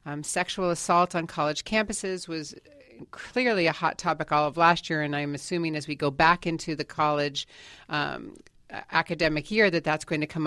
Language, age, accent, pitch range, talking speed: English, 40-59, American, 155-180 Hz, 190 wpm